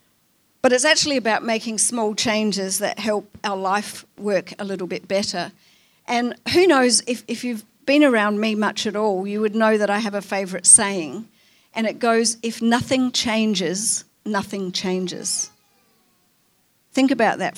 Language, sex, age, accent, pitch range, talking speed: English, female, 50-69, Australian, 195-230 Hz, 165 wpm